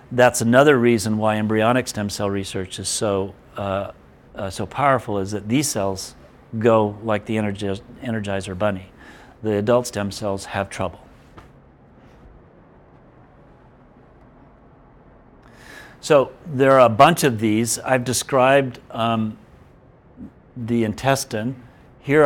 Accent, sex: American, male